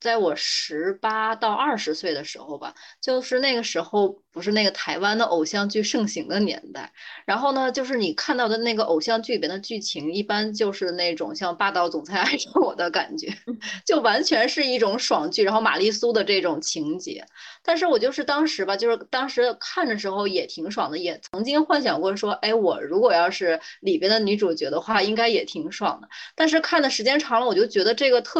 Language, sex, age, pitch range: Chinese, female, 20-39, 195-300 Hz